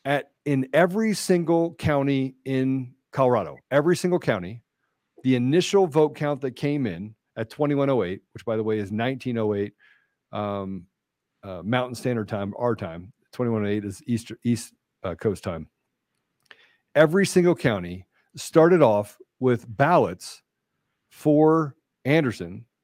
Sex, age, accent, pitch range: male, 50-69, American, 110-145 Hz